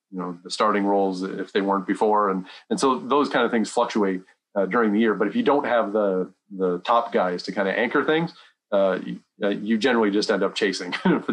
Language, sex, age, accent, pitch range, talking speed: English, male, 40-59, American, 90-110 Hz, 240 wpm